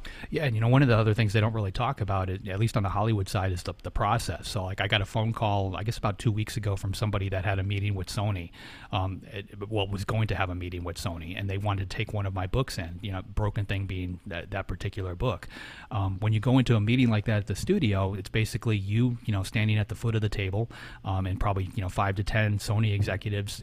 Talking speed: 280 wpm